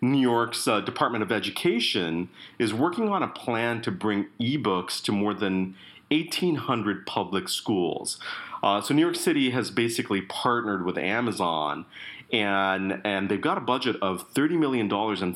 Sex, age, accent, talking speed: male, 40-59, American, 155 wpm